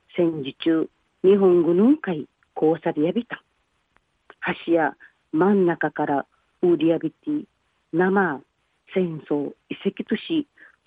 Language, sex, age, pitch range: Japanese, female, 40-59, 160-215 Hz